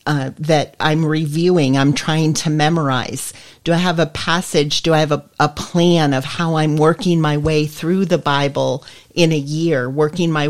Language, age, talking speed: English, 40-59, 190 wpm